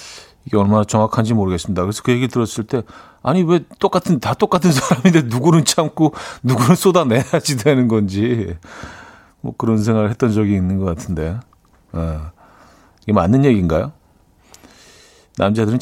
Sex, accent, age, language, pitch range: male, native, 40-59, Korean, 95-140 Hz